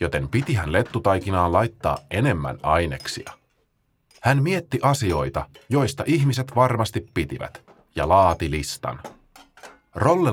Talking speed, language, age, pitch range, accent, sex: 105 wpm, Finnish, 30-49, 90-125 Hz, native, male